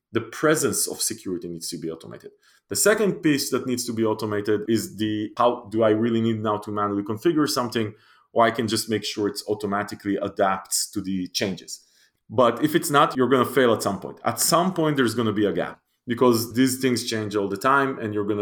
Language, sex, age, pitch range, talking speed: English, male, 30-49, 100-125 Hz, 230 wpm